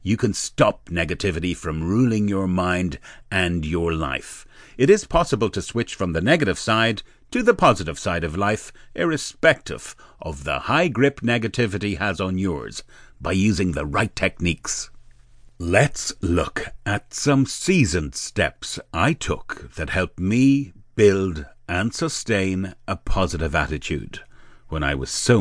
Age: 60-79